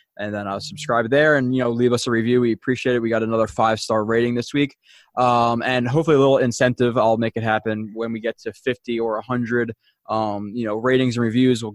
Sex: male